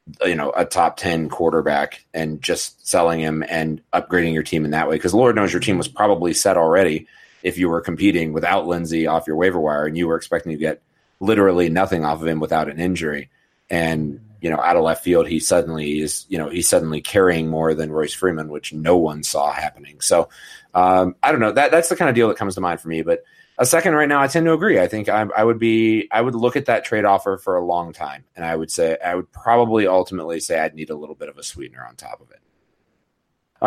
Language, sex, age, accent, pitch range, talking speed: English, male, 30-49, American, 80-115 Hz, 250 wpm